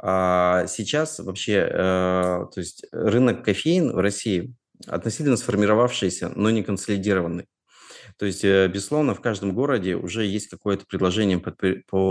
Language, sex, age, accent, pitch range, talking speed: Russian, male, 30-49, native, 90-105 Hz, 125 wpm